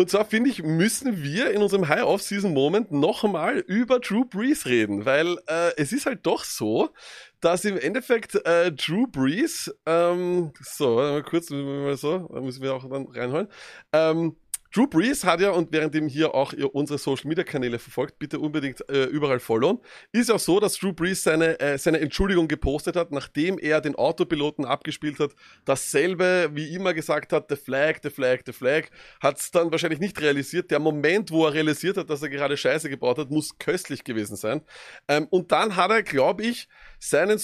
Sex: male